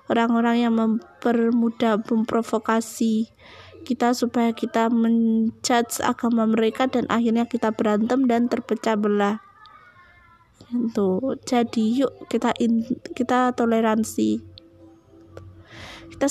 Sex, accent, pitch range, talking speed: female, native, 220-250 Hz, 90 wpm